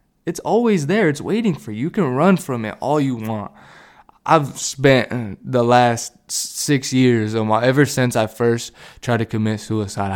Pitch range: 105-125 Hz